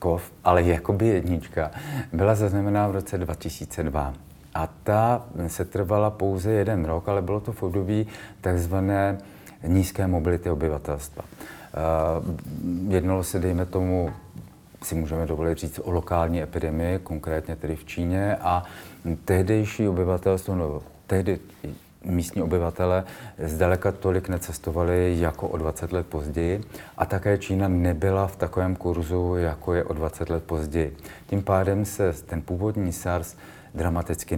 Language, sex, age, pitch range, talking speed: Czech, male, 40-59, 80-95 Hz, 130 wpm